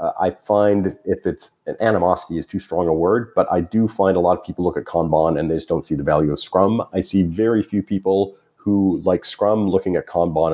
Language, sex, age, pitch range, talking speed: English, male, 40-59, 85-105 Hz, 240 wpm